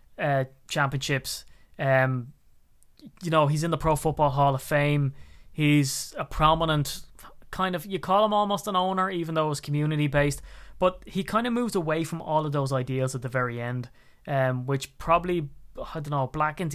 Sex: male